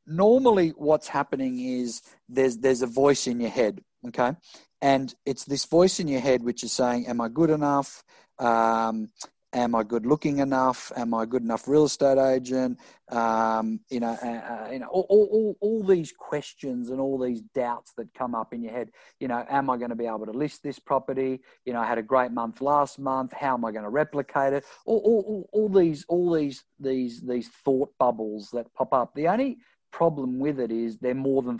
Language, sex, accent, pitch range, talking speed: English, male, Australian, 120-140 Hz, 215 wpm